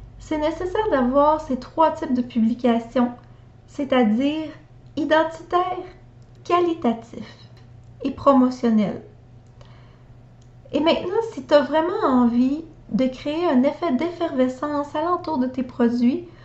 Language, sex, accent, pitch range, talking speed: French, female, Canadian, 235-305 Hz, 105 wpm